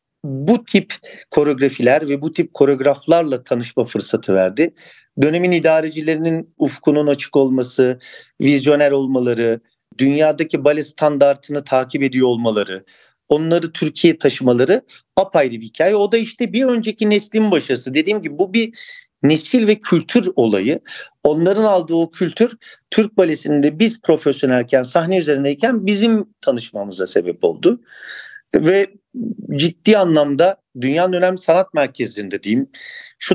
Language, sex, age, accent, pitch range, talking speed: Turkish, male, 50-69, native, 135-195 Hz, 120 wpm